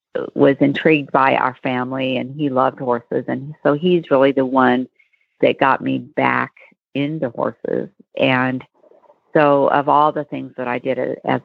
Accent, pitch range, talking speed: American, 130-150 Hz, 160 wpm